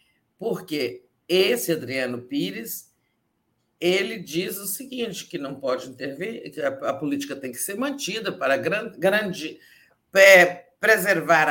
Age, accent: 50-69, Brazilian